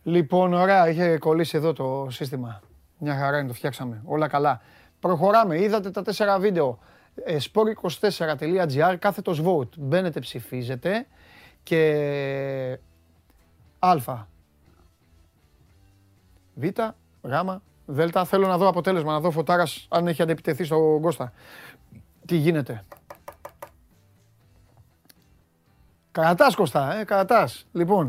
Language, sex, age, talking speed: Greek, male, 30-49, 105 wpm